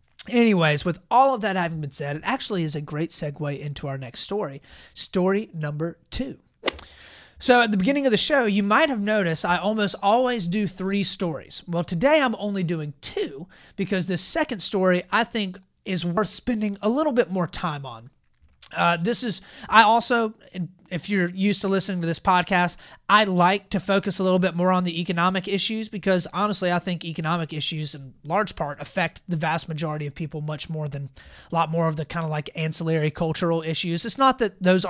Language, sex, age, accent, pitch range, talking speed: English, male, 30-49, American, 160-200 Hz, 200 wpm